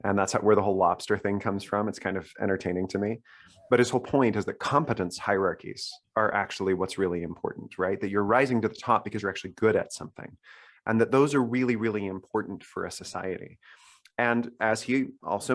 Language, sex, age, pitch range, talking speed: English, male, 30-49, 100-120 Hz, 215 wpm